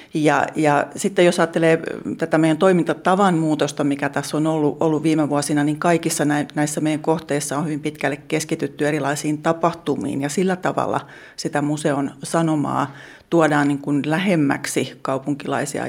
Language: Finnish